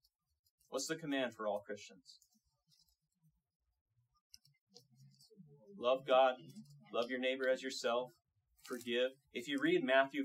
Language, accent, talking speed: English, American, 105 wpm